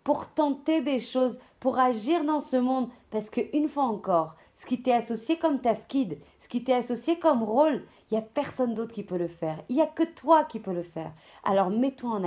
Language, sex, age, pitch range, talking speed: French, female, 40-59, 210-275 Hz, 225 wpm